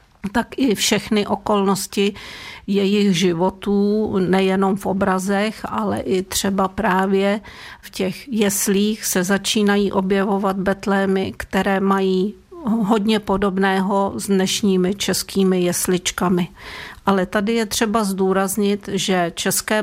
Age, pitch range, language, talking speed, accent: 50-69, 190-205 Hz, Czech, 105 wpm, native